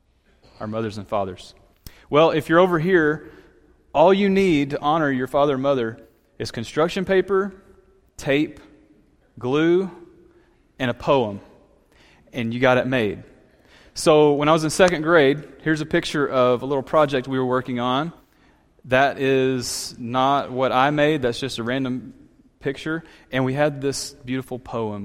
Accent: American